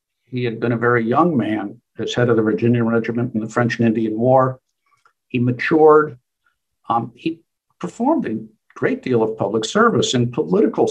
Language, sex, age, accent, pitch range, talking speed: English, male, 60-79, American, 120-155 Hz, 175 wpm